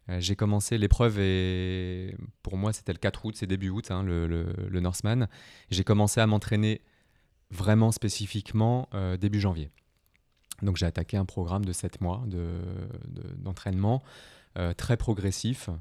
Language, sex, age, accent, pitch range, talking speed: French, male, 20-39, French, 90-105 Hz, 155 wpm